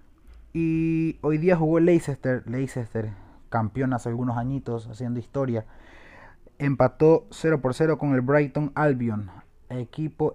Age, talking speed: 20-39, 130 wpm